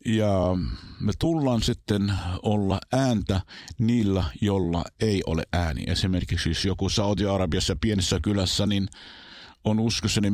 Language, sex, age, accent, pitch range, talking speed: Finnish, male, 50-69, native, 95-115 Hz, 115 wpm